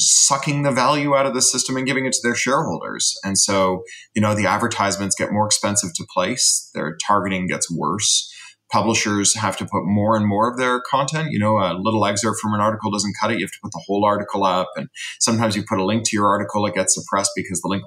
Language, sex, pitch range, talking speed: English, male, 100-125 Hz, 240 wpm